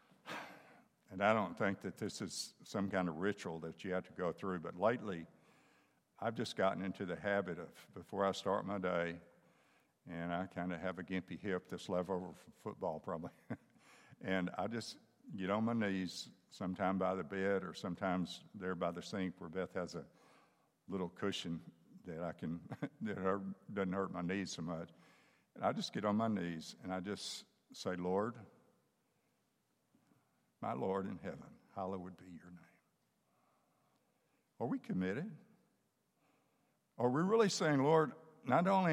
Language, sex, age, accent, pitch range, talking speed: English, male, 60-79, American, 95-120 Hz, 165 wpm